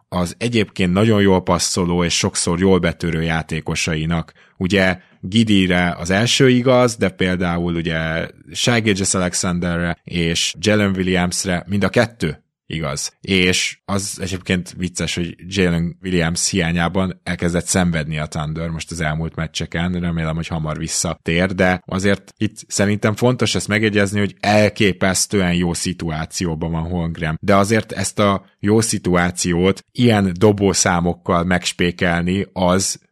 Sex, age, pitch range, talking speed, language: male, 20-39, 85-100 Hz, 125 wpm, Hungarian